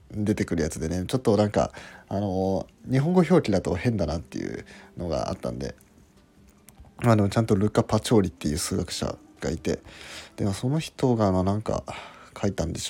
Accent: native